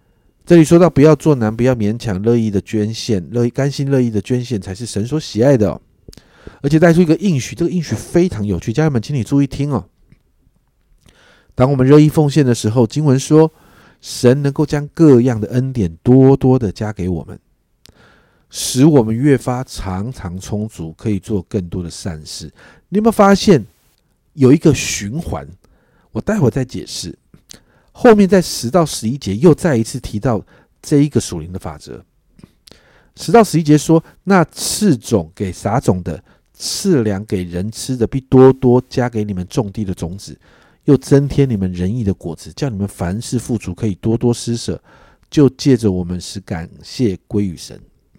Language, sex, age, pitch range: Chinese, male, 50-69, 100-150 Hz